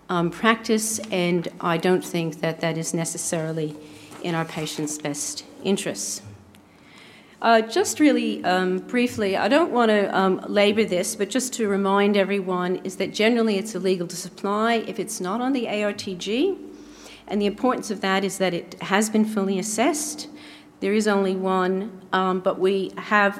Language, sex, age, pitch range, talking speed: English, female, 40-59, 175-220 Hz, 165 wpm